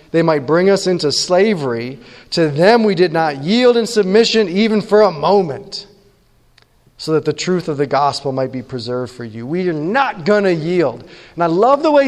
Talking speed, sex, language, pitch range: 205 wpm, male, English, 155-215 Hz